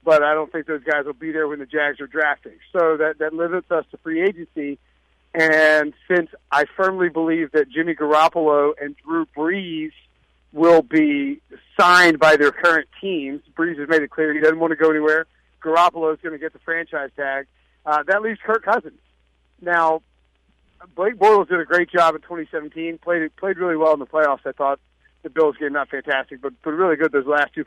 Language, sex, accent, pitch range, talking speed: English, male, American, 145-170 Hz, 205 wpm